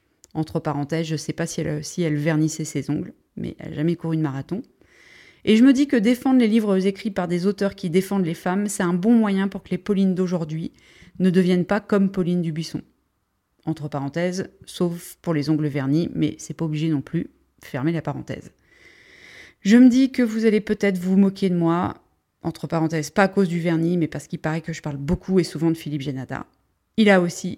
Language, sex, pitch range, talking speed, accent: French, female, 150-190 Hz, 220 wpm, French